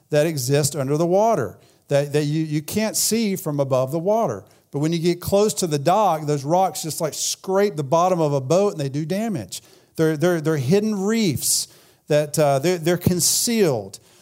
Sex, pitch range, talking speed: male, 155-200 Hz, 200 wpm